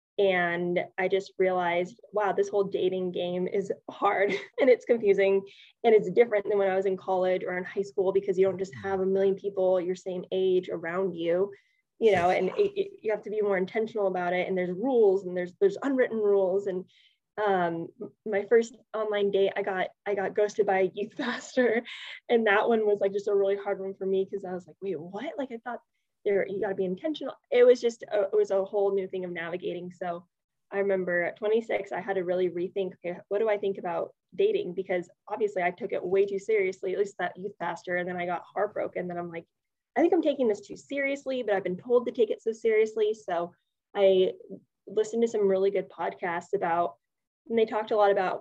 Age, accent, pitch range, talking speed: 10-29, American, 185-235 Hz, 225 wpm